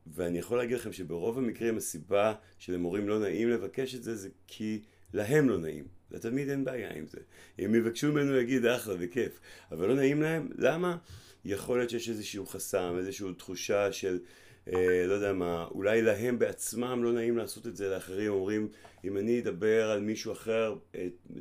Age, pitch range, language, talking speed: 40-59, 90-115 Hz, Hebrew, 180 wpm